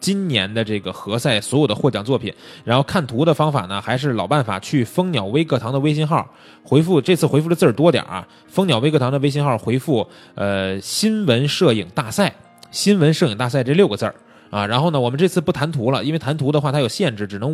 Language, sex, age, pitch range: Chinese, male, 20-39, 110-150 Hz